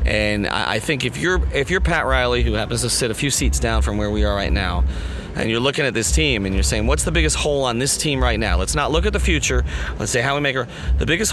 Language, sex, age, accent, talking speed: English, male, 30-49, American, 280 wpm